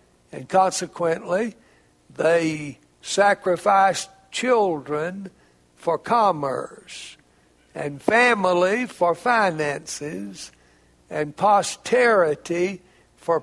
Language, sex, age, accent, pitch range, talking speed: English, male, 60-79, American, 140-210 Hz, 65 wpm